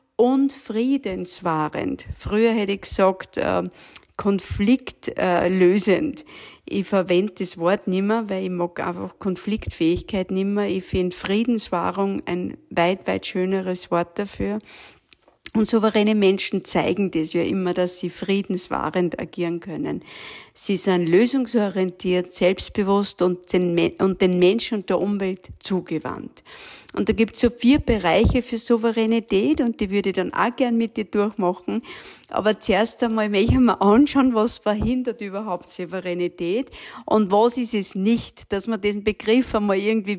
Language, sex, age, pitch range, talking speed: German, female, 50-69, 190-235 Hz, 140 wpm